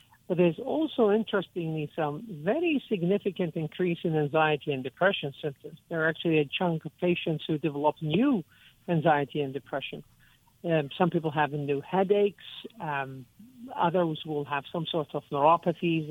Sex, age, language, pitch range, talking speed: male, 60-79, English, 145-180 Hz, 150 wpm